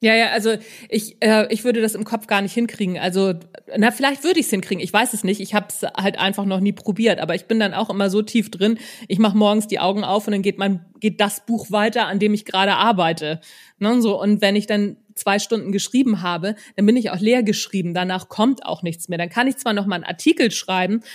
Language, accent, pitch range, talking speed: German, German, 185-225 Hz, 260 wpm